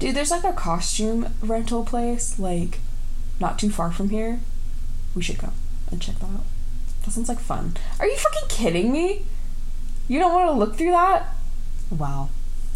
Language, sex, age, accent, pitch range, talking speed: English, female, 10-29, American, 155-230 Hz, 175 wpm